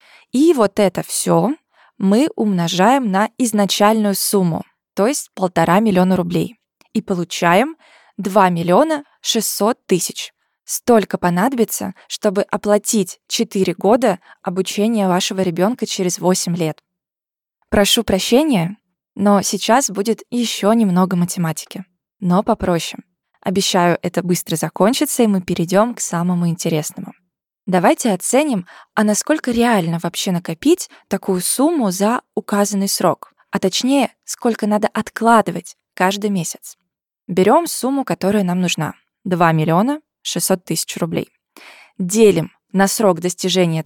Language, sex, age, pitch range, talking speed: Russian, female, 20-39, 180-225 Hz, 115 wpm